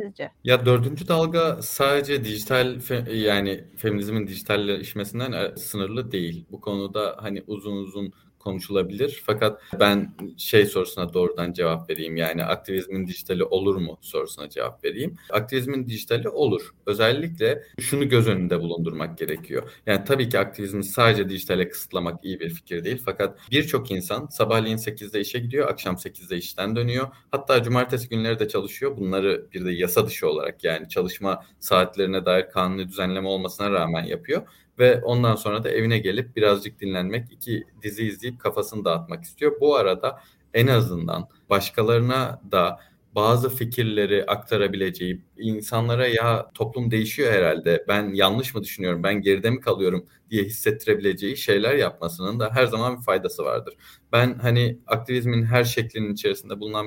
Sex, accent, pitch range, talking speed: male, native, 100-125 Hz, 140 wpm